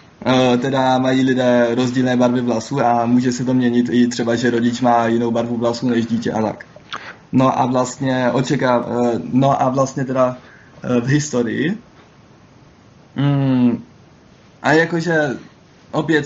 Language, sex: Czech, male